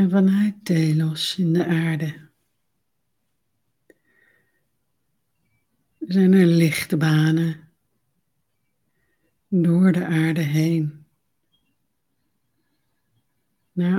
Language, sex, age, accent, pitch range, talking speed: Dutch, female, 60-79, Dutch, 135-170 Hz, 60 wpm